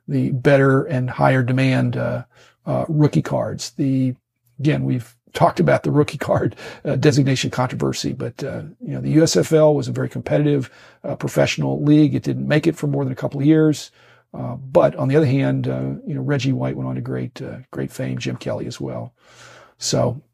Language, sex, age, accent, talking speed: English, male, 50-69, American, 200 wpm